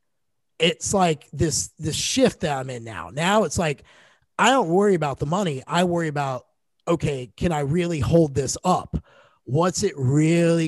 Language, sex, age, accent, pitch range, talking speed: English, male, 30-49, American, 135-165 Hz, 175 wpm